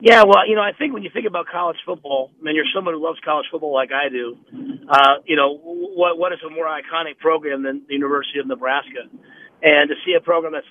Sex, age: male, 40-59